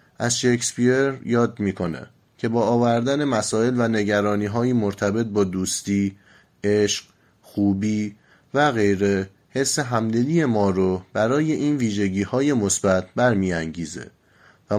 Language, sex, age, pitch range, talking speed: Persian, male, 30-49, 100-125 Hz, 110 wpm